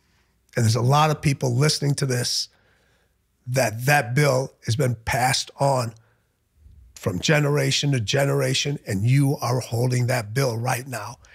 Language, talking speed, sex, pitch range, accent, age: English, 150 wpm, male, 110-140 Hz, American, 50-69